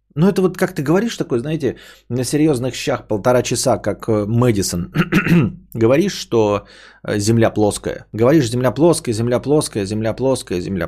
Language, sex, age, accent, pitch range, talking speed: Russian, male, 20-39, native, 105-150 Hz, 150 wpm